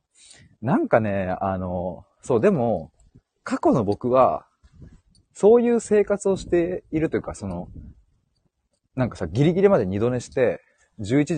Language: Japanese